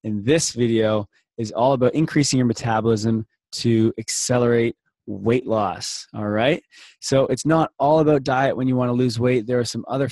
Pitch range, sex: 115-140 Hz, male